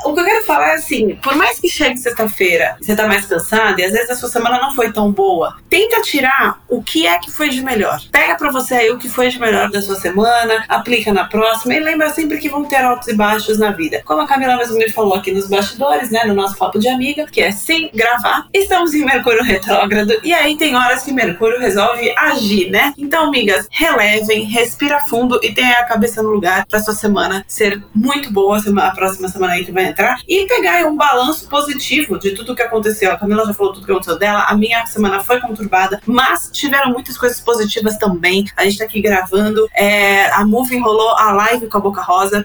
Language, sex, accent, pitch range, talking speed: Portuguese, female, Brazilian, 205-265 Hz, 230 wpm